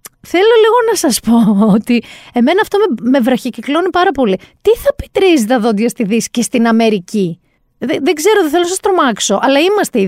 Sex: female